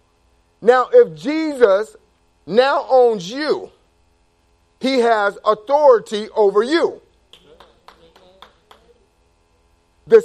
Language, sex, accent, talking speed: English, male, American, 70 wpm